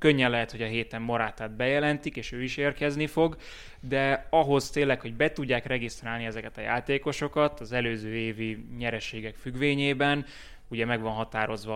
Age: 20-39